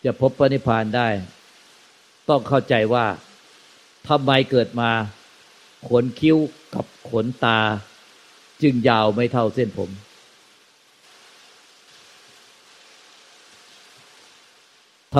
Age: 60-79